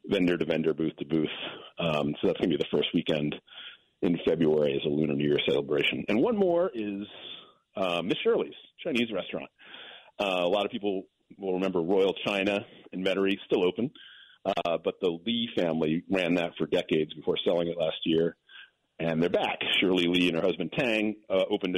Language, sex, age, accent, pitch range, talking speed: English, male, 40-59, American, 80-105 Hz, 180 wpm